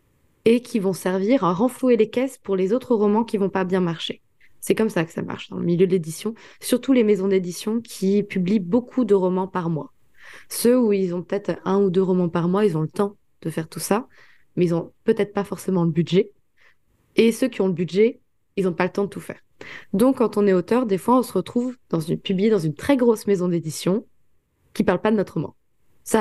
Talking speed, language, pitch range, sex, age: 240 wpm, French, 175-215 Hz, female, 20-39